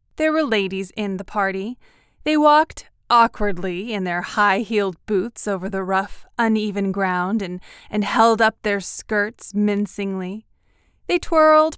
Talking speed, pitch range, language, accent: 145 wpm, 200-265 Hz, English, American